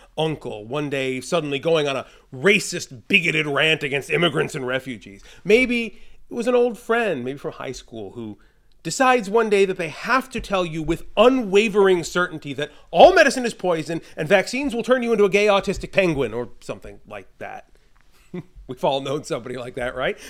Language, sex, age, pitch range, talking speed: English, male, 30-49, 140-210 Hz, 185 wpm